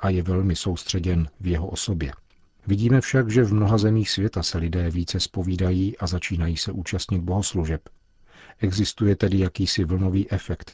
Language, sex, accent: Czech, male, native